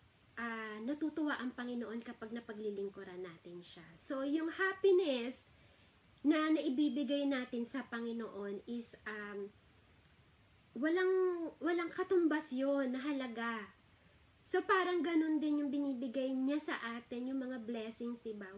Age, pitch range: 20-39, 210-285 Hz